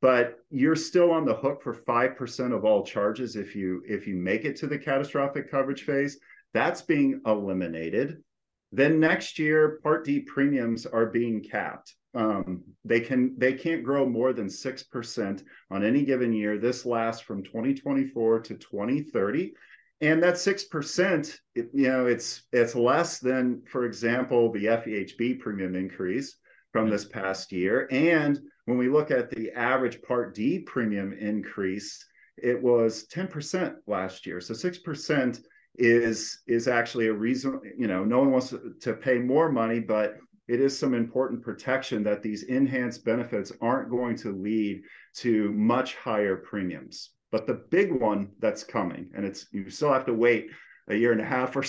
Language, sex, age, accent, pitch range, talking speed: English, male, 40-59, American, 110-145 Hz, 165 wpm